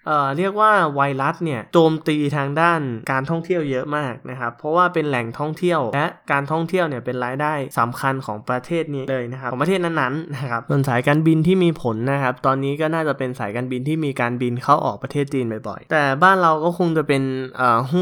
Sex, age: male, 20-39